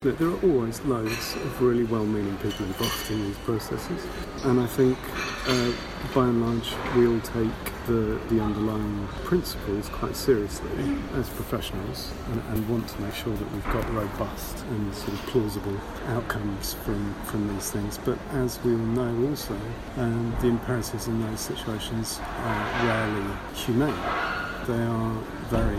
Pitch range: 100-120 Hz